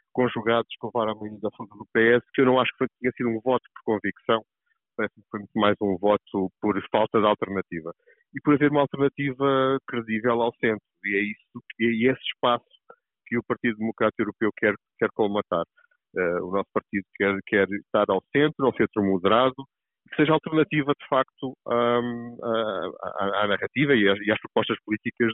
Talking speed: 185 wpm